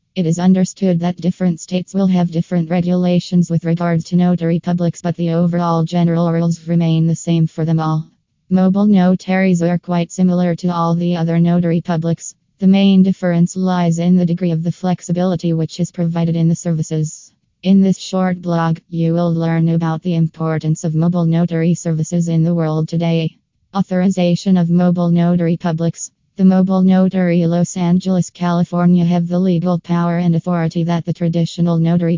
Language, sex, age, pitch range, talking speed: English, female, 20-39, 165-180 Hz, 170 wpm